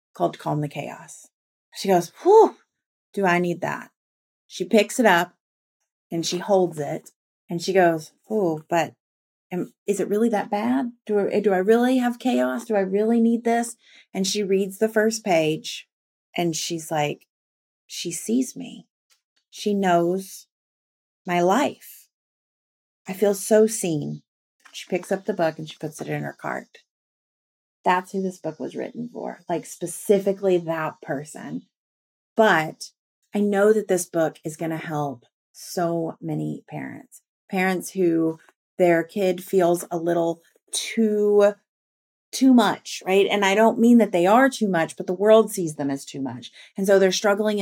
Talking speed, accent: 165 wpm, American